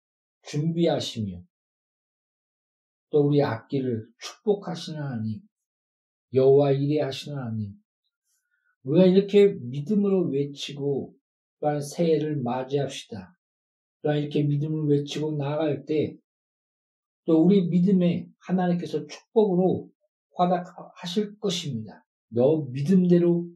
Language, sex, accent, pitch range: Korean, male, native, 140-195 Hz